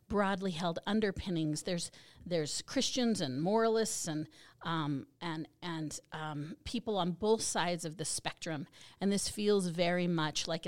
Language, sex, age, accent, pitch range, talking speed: English, female, 40-59, American, 165-205 Hz, 145 wpm